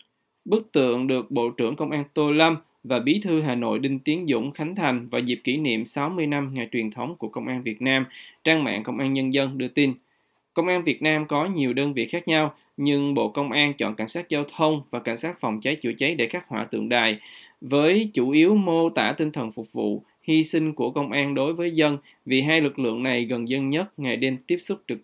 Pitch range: 125-160 Hz